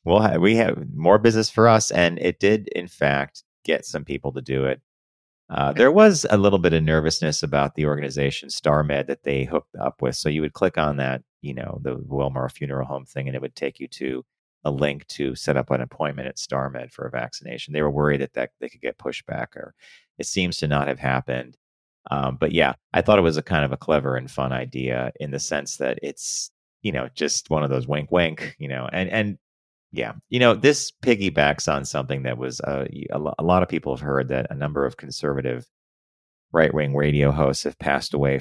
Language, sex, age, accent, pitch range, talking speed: English, male, 30-49, American, 65-80 Hz, 225 wpm